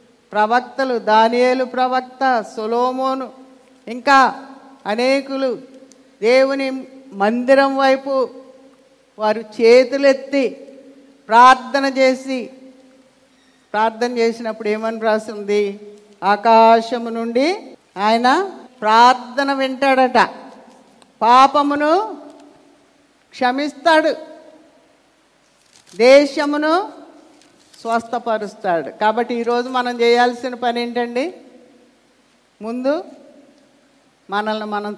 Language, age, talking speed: Telugu, 50-69, 60 wpm